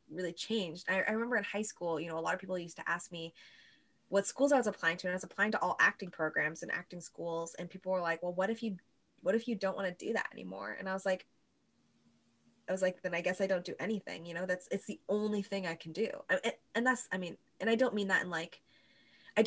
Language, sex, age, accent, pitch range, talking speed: English, female, 20-39, American, 170-200 Hz, 270 wpm